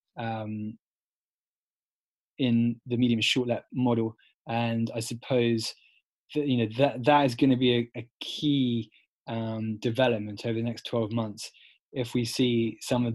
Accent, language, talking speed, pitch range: British, English, 155 wpm, 105-120 Hz